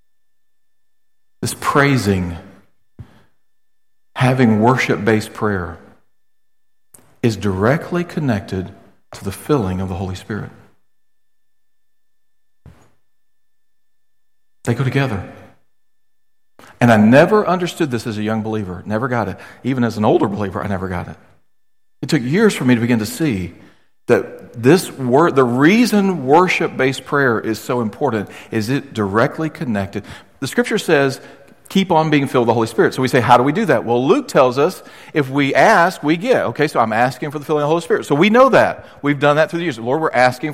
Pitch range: 120-185 Hz